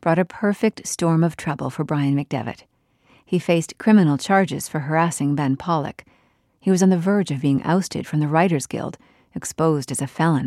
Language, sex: English, female